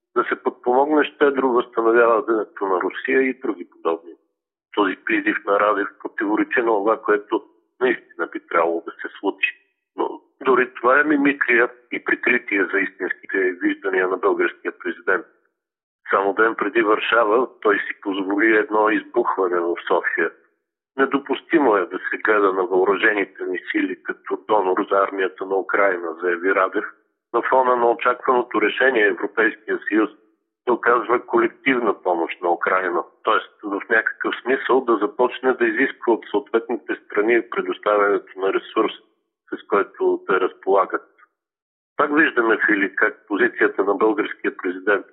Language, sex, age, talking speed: Bulgarian, male, 50-69, 140 wpm